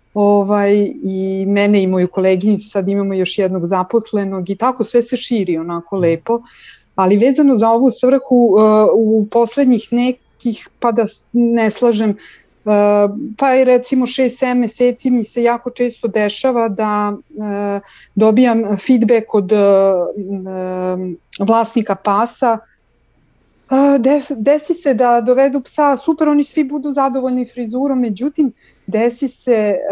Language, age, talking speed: Croatian, 40-59, 120 wpm